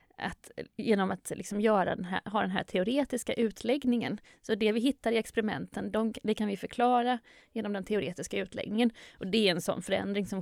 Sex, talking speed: female, 195 wpm